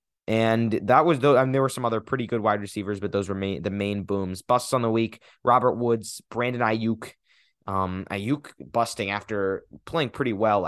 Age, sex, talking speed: 20-39, male, 190 wpm